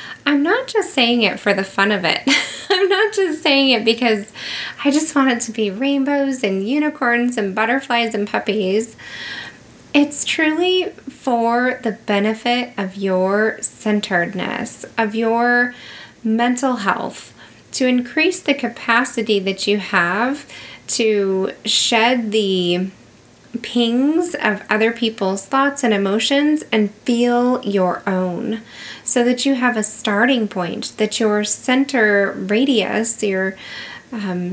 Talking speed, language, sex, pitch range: 130 wpm, English, female, 205-260 Hz